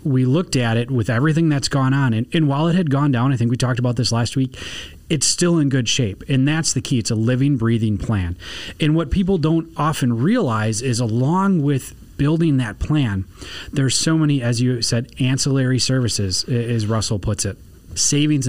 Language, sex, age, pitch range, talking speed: English, male, 30-49, 105-140 Hz, 205 wpm